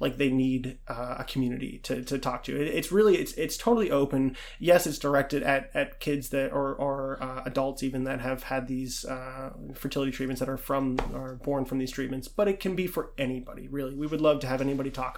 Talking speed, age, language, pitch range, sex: 220 wpm, 20-39, English, 130-155 Hz, male